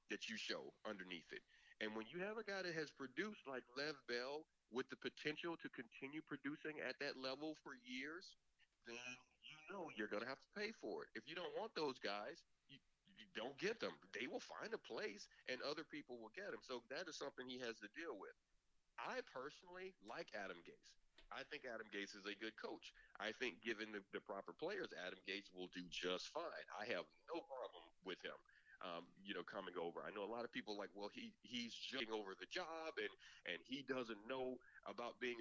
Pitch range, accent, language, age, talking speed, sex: 110-160 Hz, American, English, 40-59, 215 wpm, male